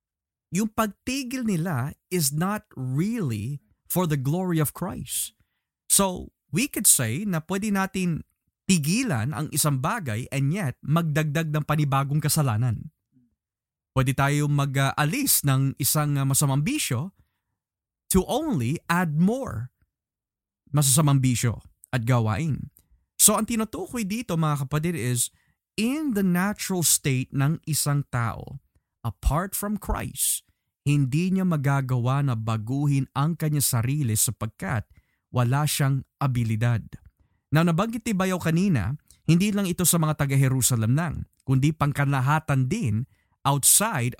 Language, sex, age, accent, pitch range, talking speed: Filipino, male, 20-39, native, 125-170 Hz, 120 wpm